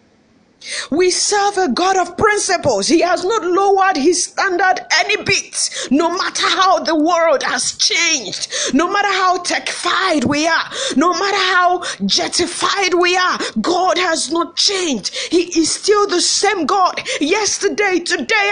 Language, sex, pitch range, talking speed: English, female, 335-400 Hz, 145 wpm